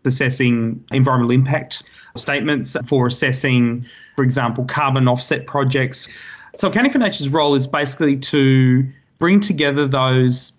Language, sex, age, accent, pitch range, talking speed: English, male, 30-49, Australian, 125-145 Hz, 125 wpm